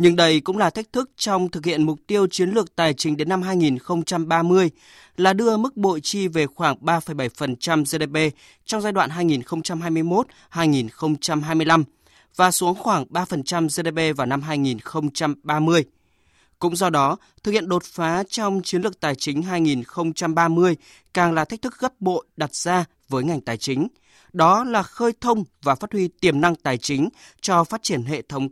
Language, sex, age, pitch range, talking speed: Vietnamese, male, 20-39, 150-185 Hz, 170 wpm